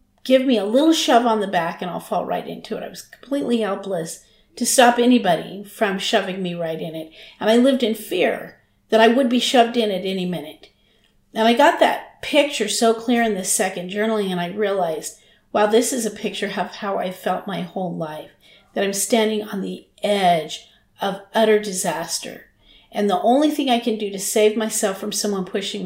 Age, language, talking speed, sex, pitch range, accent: 40-59, English, 205 wpm, female, 200-240 Hz, American